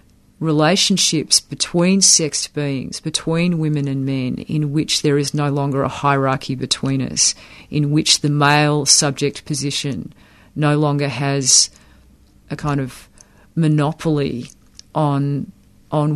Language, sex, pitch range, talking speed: English, female, 135-160 Hz, 125 wpm